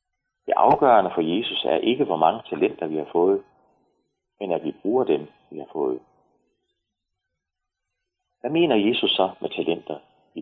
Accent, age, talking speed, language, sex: native, 30-49, 150 wpm, Danish, male